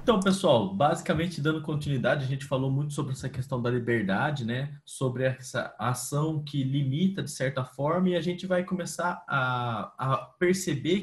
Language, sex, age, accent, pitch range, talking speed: Portuguese, male, 20-39, Brazilian, 140-185 Hz, 170 wpm